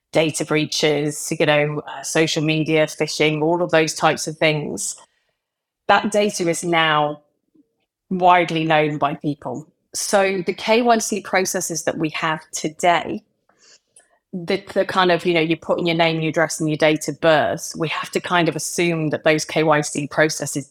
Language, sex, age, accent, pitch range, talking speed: English, female, 30-49, British, 155-180 Hz, 170 wpm